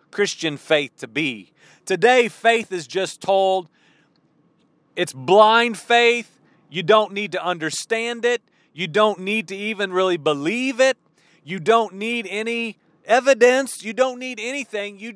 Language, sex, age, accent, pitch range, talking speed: English, male, 40-59, American, 175-245 Hz, 145 wpm